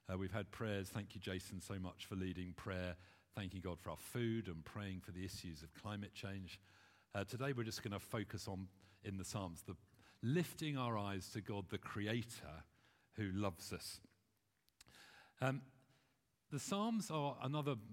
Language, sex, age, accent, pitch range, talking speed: English, male, 50-69, British, 95-125 Hz, 175 wpm